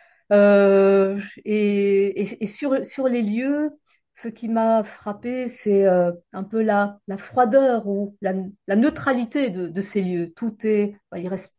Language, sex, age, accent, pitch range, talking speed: French, female, 40-59, French, 195-245 Hz, 165 wpm